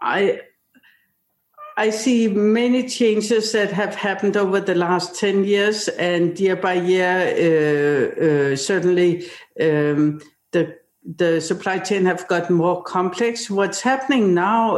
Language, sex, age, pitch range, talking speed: English, female, 60-79, 175-215 Hz, 130 wpm